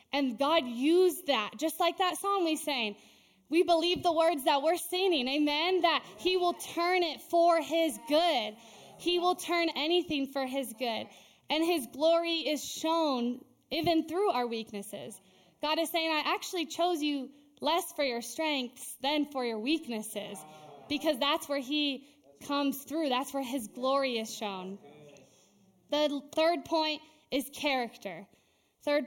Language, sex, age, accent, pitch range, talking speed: English, female, 10-29, American, 245-315 Hz, 155 wpm